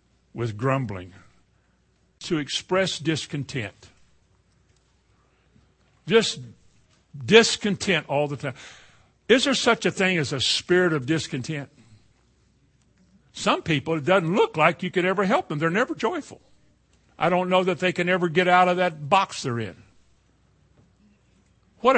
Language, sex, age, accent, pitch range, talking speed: English, male, 60-79, American, 130-175 Hz, 135 wpm